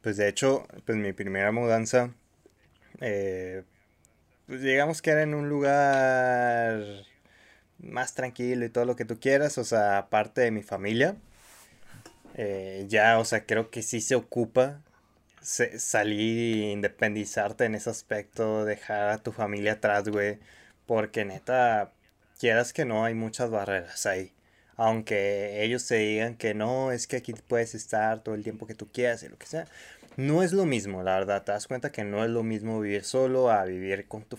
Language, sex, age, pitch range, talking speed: Spanish, male, 20-39, 105-130 Hz, 175 wpm